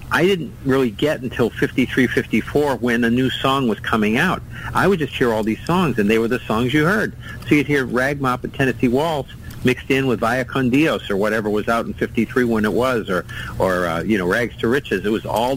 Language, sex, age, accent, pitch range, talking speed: English, male, 50-69, American, 105-125 Hz, 230 wpm